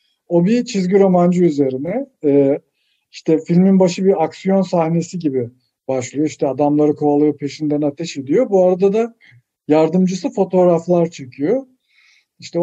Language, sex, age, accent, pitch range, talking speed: Turkish, male, 50-69, native, 135-185 Hz, 125 wpm